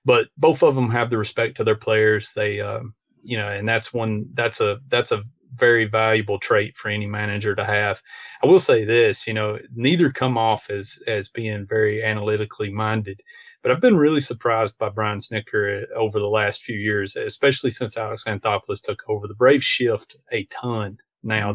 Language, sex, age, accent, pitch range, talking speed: English, male, 30-49, American, 105-125 Hz, 190 wpm